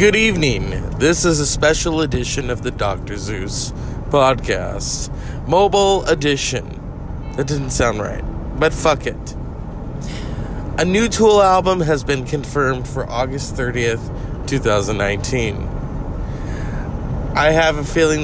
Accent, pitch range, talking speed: American, 125-155 Hz, 125 wpm